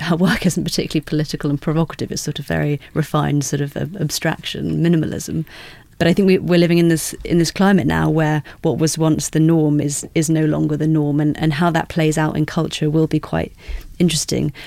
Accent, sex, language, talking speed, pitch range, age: British, female, English, 215 wpm, 150-170 Hz, 30-49